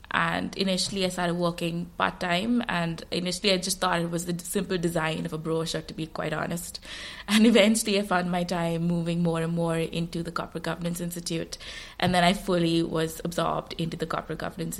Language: English